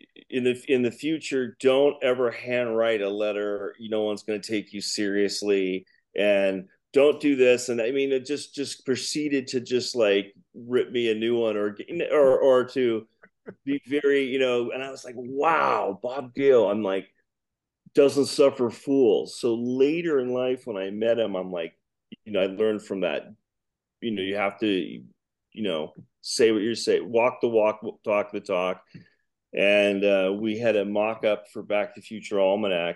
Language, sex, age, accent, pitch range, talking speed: English, male, 40-59, American, 100-125 Hz, 190 wpm